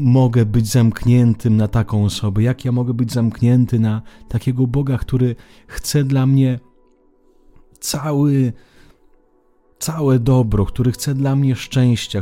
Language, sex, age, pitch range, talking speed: Italian, male, 30-49, 95-125 Hz, 130 wpm